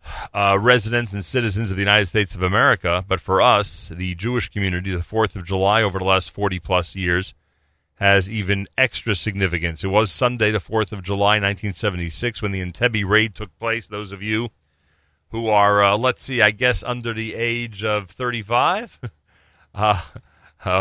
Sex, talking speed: male, 170 wpm